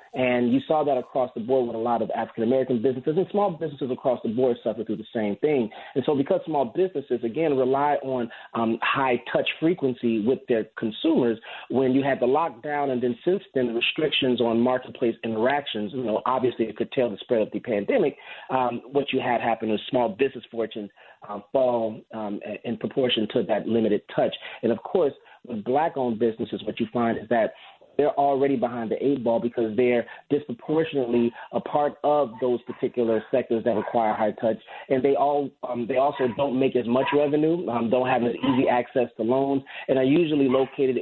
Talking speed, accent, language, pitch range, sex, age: 200 wpm, American, English, 115-135 Hz, male, 40-59